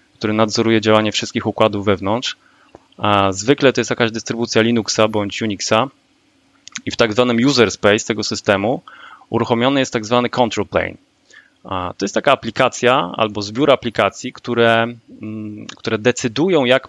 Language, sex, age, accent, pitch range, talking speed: Polish, male, 20-39, native, 110-130 Hz, 140 wpm